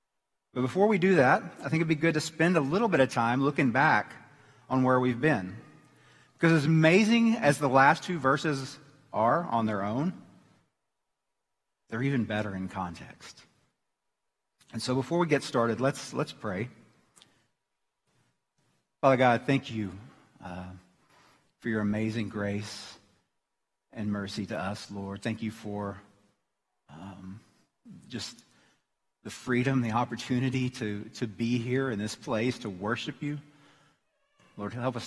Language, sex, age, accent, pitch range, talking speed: English, male, 40-59, American, 110-135 Hz, 145 wpm